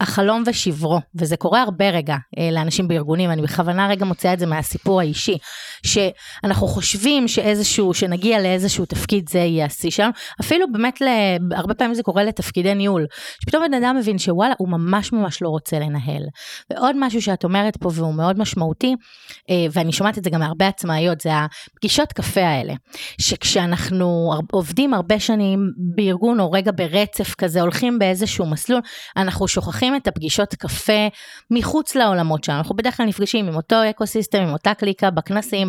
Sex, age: female, 30-49